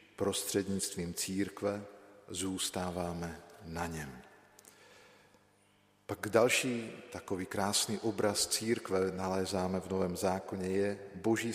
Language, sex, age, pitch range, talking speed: Slovak, male, 50-69, 90-105 Hz, 90 wpm